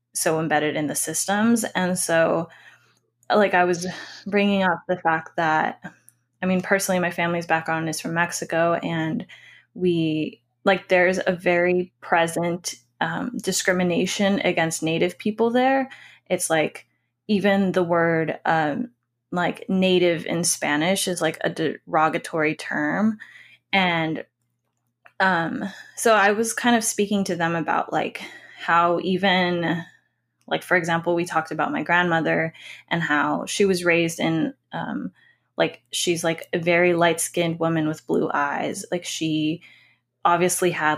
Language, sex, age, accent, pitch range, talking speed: English, female, 10-29, American, 160-190 Hz, 140 wpm